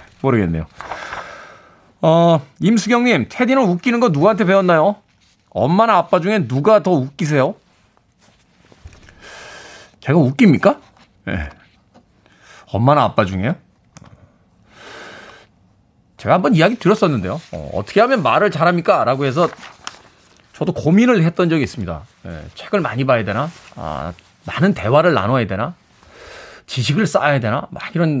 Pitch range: 120-190 Hz